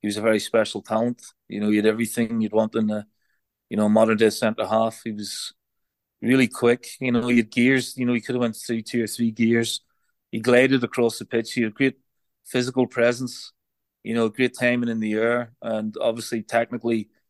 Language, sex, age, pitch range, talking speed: English, male, 30-49, 110-120 Hz, 210 wpm